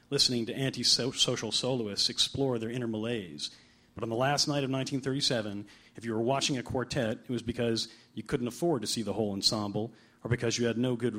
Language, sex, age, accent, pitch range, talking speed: English, male, 40-59, American, 110-140 Hz, 205 wpm